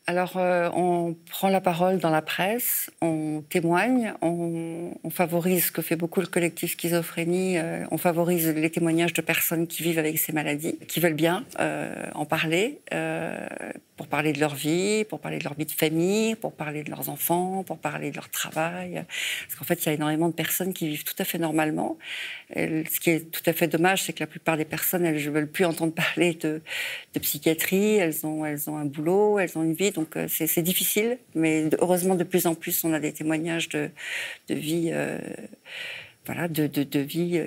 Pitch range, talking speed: 160-185 Hz, 215 wpm